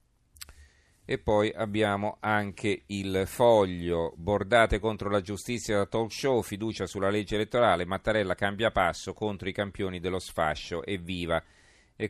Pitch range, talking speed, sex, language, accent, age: 90-110 Hz, 135 wpm, male, Italian, native, 40-59